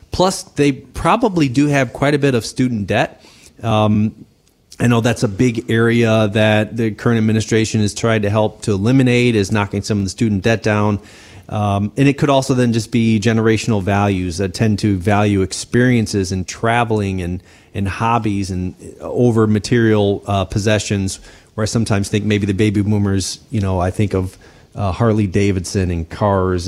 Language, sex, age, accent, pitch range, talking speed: English, male, 30-49, American, 105-125 Hz, 175 wpm